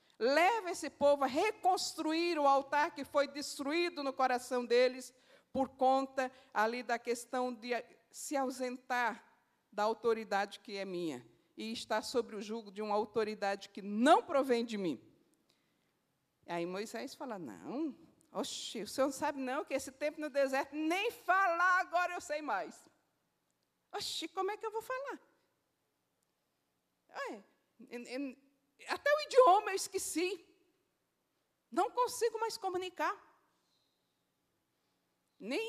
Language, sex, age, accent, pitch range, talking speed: Portuguese, female, 50-69, Brazilian, 210-320 Hz, 135 wpm